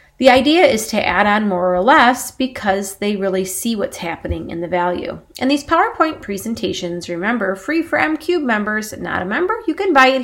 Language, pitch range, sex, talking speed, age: English, 185-260 Hz, female, 200 wpm, 30-49